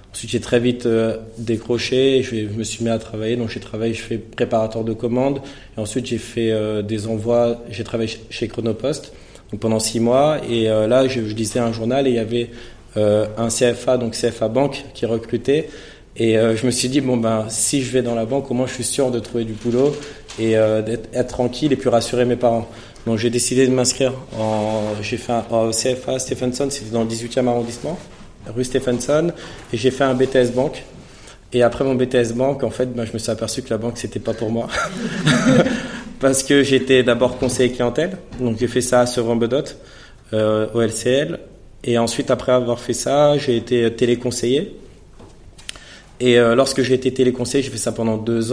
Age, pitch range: 20-39, 115-130 Hz